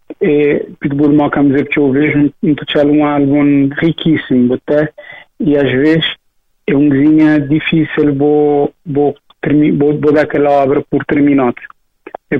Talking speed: 135 wpm